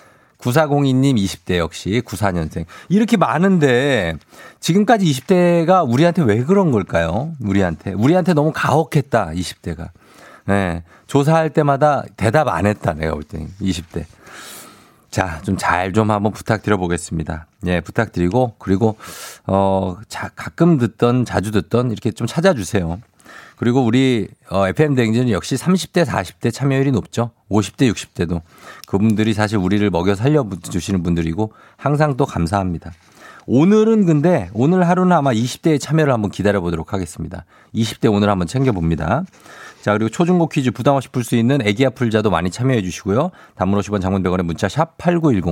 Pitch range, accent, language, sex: 95-145 Hz, native, Korean, male